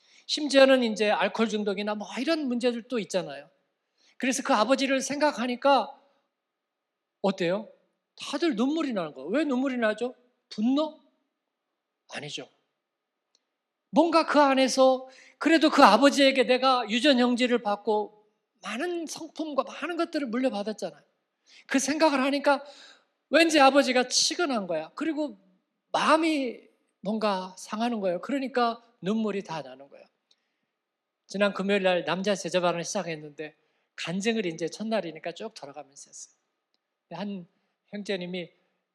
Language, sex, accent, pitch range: Korean, male, native, 195-275 Hz